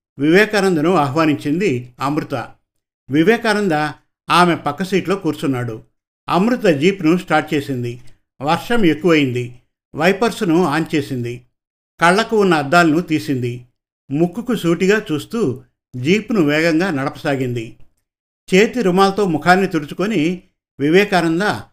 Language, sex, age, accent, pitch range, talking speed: Telugu, male, 50-69, native, 140-180 Hz, 90 wpm